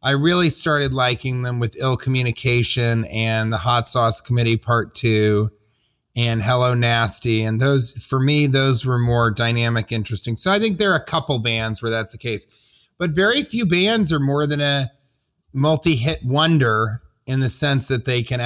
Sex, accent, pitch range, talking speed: male, American, 115-145 Hz, 180 wpm